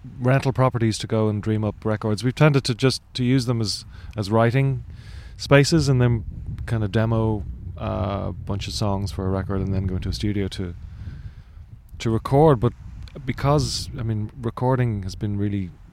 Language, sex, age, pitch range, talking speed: English, male, 30-49, 95-115 Hz, 185 wpm